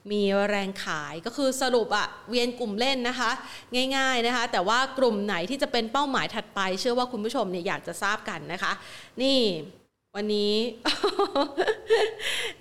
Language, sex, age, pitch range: Thai, female, 30-49, 205-270 Hz